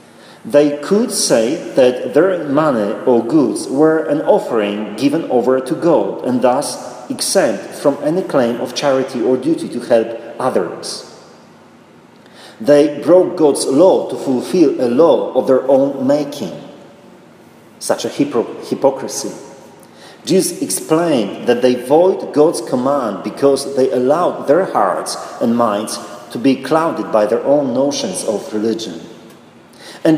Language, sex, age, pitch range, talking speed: English, male, 40-59, 130-200 Hz, 135 wpm